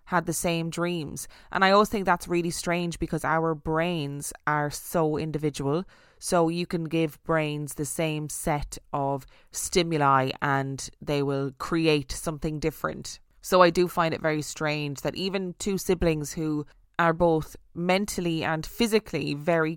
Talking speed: 155 wpm